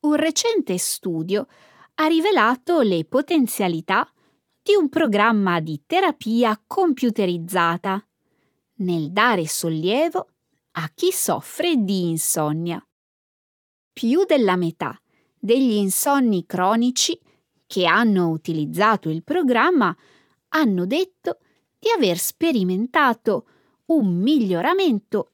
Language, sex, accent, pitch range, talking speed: Italian, female, native, 175-285 Hz, 90 wpm